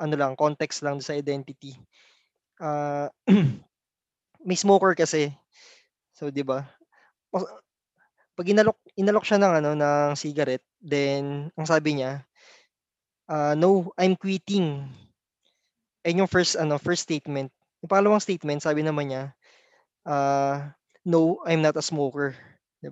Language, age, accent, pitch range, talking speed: Filipino, 20-39, native, 145-195 Hz, 125 wpm